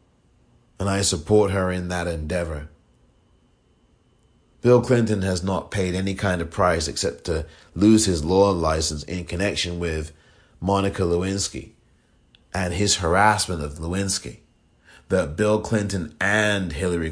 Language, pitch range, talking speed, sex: English, 80-100 Hz, 130 wpm, male